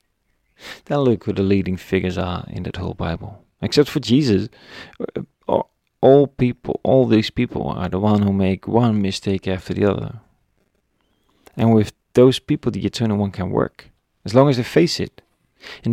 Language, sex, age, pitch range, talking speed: English, male, 40-59, 95-120 Hz, 170 wpm